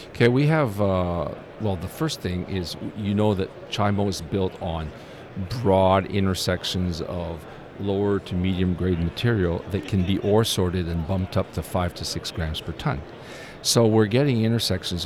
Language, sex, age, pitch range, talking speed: English, male, 50-69, 85-105 Hz, 170 wpm